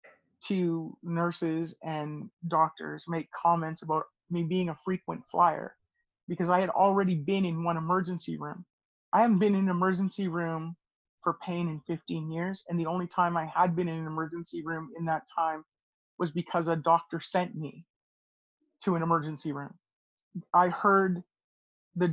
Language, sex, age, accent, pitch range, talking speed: English, male, 40-59, American, 165-190 Hz, 165 wpm